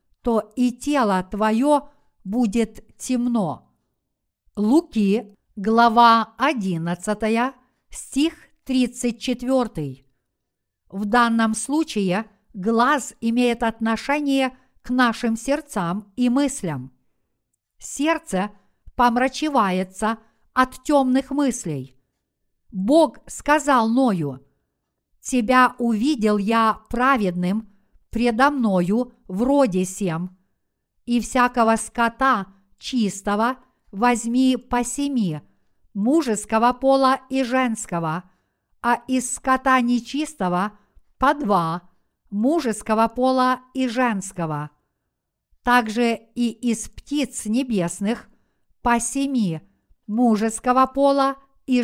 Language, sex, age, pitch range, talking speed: Russian, female, 50-69, 205-260 Hz, 80 wpm